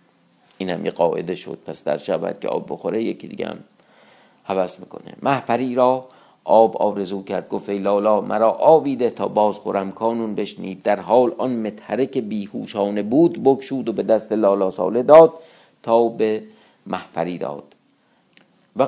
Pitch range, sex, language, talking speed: 95-125 Hz, male, Persian, 145 wpm